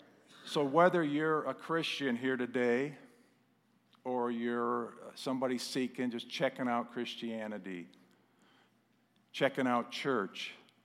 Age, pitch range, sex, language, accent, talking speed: 50-69, 110-130 Hz, male, English, American, 100 wpm